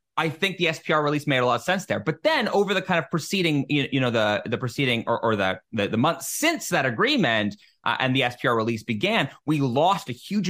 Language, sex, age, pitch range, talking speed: English, male, 20-39, 115-160 Hz, 240 wpm